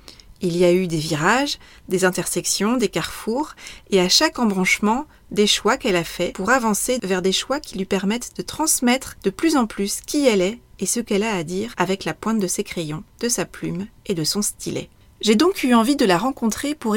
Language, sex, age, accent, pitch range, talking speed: French, female, 30-49, French, 190-250 Hz, 225 wpm